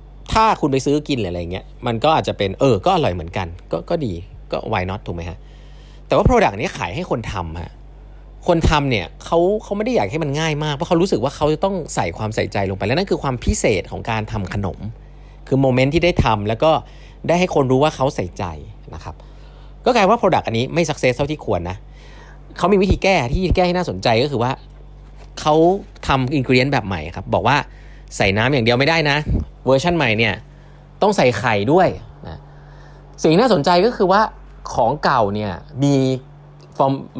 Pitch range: 110-150 Hz